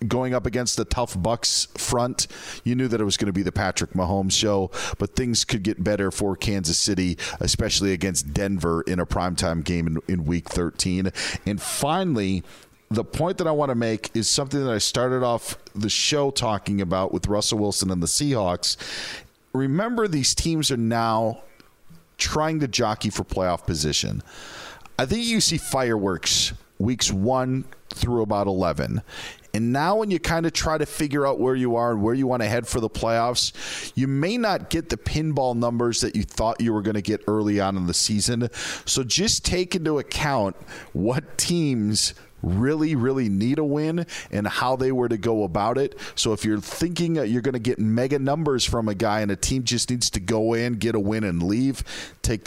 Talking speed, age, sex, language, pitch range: 200 wpm, 40-59, male, English, 100-130 Hz